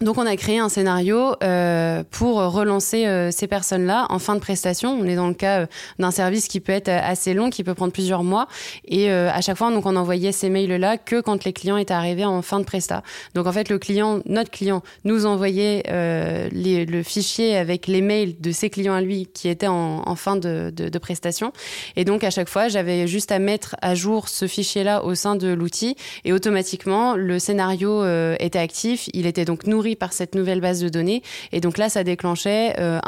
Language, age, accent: French, 20-39, French